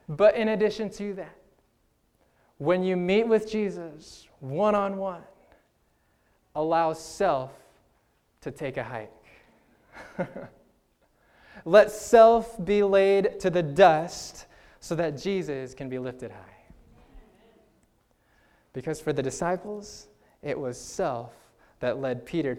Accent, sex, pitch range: American, male, 125-205 Hz